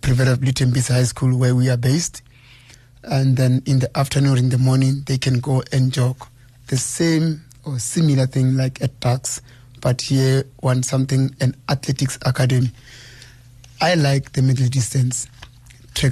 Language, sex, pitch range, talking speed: English, male, 125-140 Hz, 155 wpm